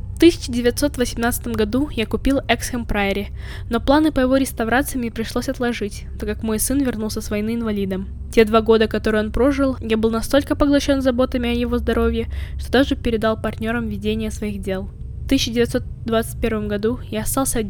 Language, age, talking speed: Ukrainian, 10-29, 155 wpm